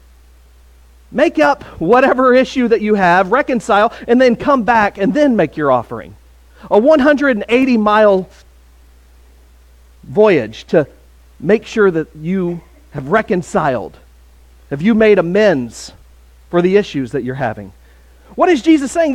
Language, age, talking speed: English, 40-59, 130 wpm